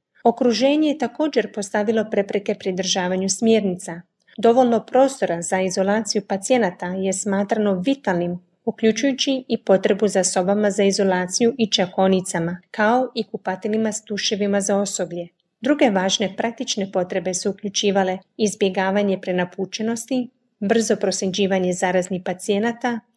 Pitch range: 190-230 Hz